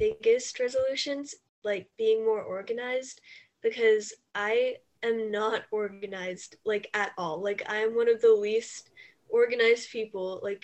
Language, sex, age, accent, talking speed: English, female, 10-29, American, 130 wpm